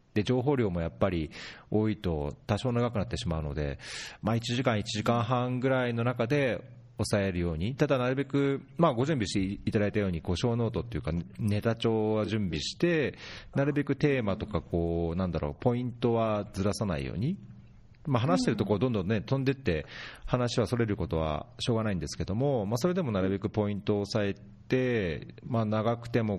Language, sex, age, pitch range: Japanese, male, 40-59, 90-125 Hz